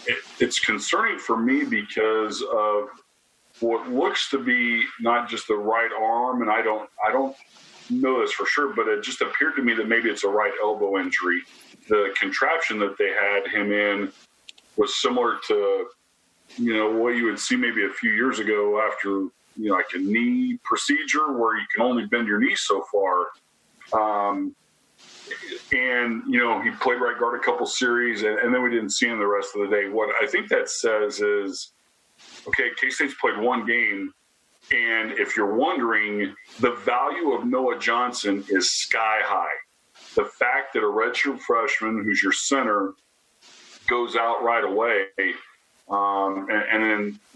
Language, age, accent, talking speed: English, 40-59, American, 175 wpm